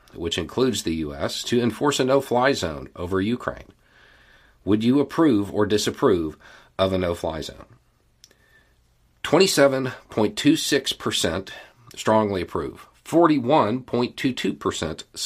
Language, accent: English, American